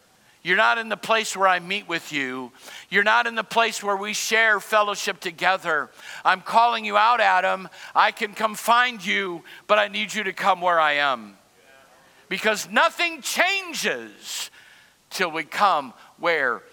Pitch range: 185-245 Hz